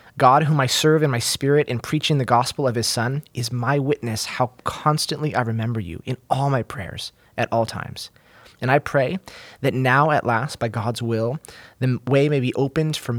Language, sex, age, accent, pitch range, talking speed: English, male, 20-39, American, 110-140 Hz, 205 wpm